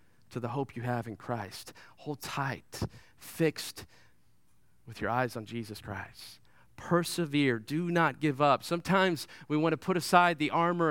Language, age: English, 40-59